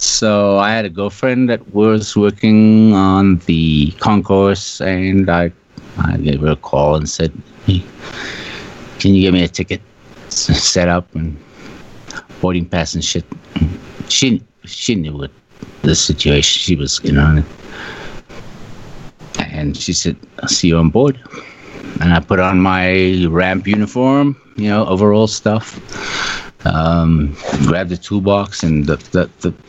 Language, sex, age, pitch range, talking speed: English, male, 50-69, 85-100 Hz, 145 wpm